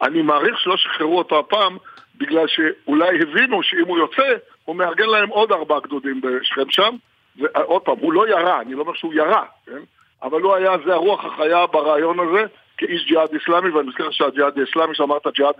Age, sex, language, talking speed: 50-69, male, Hebrew, 185 wpm